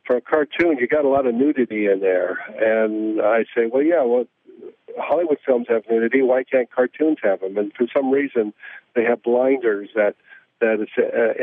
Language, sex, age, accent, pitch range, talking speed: English, male, 60-79, American, 115-145 Hz, 195 wpm